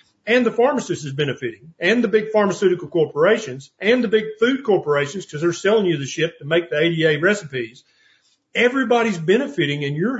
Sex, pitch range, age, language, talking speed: male, 160-205 Hz, 40-59, English, 175 wpm